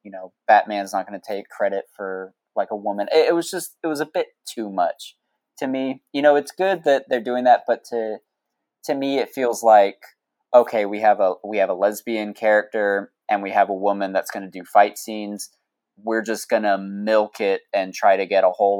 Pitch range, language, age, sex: 100-125 Hz, English, 20-39, male